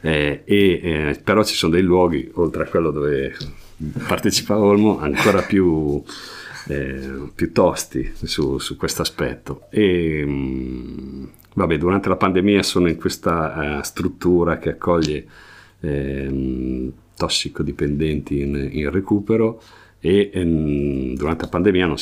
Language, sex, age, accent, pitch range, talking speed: Italian, male, 50-69, native, 75-95 Hz, 115 wpm